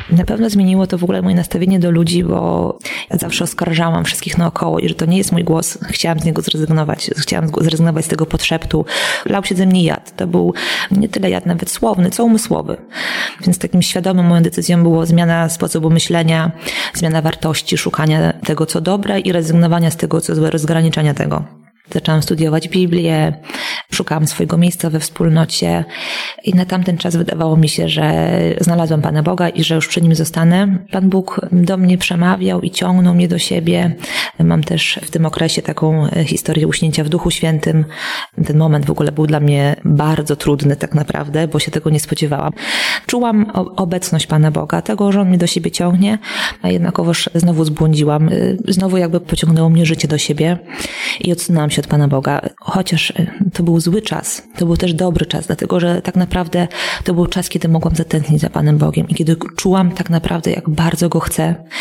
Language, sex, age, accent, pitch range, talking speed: Polish, female, 20-39, native, 160-180 Hz, 185 wpm